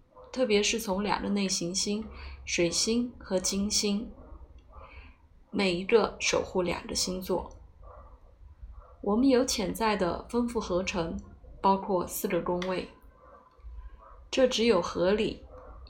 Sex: female